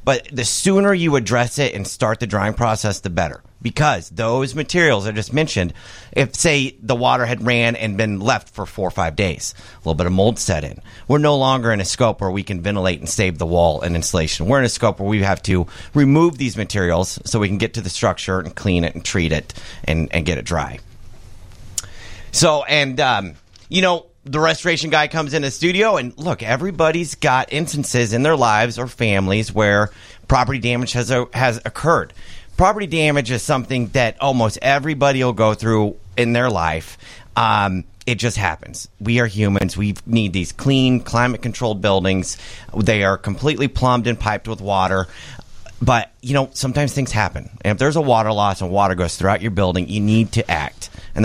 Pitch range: 95-130 Hz